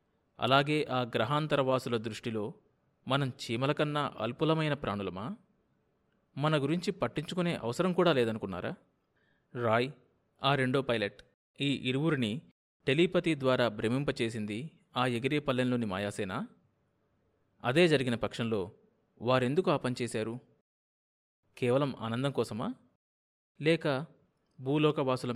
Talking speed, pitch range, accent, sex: 90 wpm, 115-150 Hz, native, male